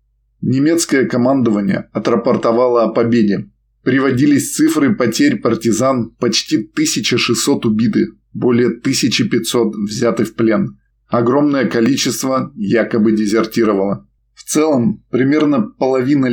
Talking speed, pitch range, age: 90 wpm, 110-130 Hz, 20-39